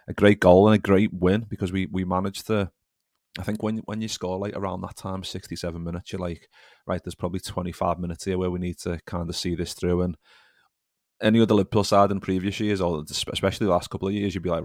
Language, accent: English, British